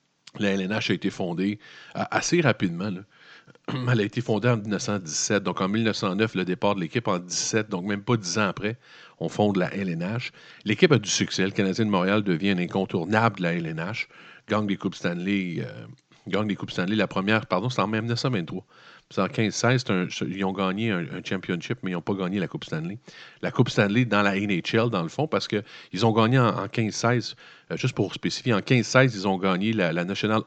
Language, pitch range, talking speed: French, 95-115 Hz, 215 wpm